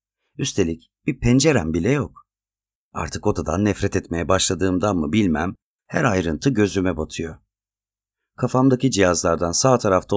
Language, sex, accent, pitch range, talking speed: Turkish, male, native, 90-120 Hz, 120 wpm